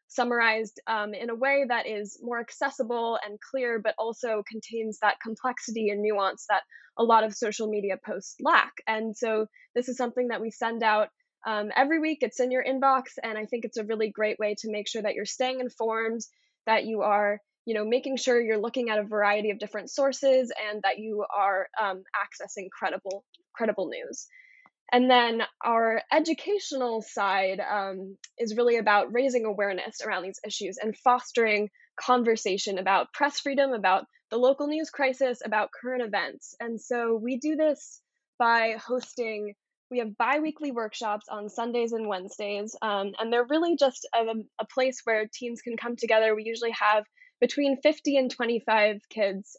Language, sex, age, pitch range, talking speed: English, female, 10-29, 210-255 Hz, 175 wpm